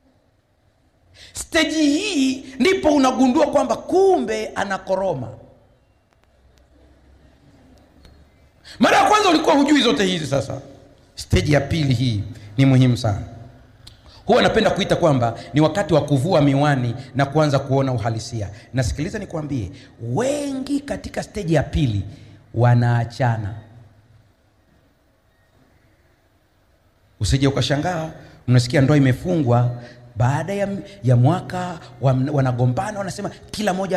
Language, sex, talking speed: Swahili, male, 100 wpm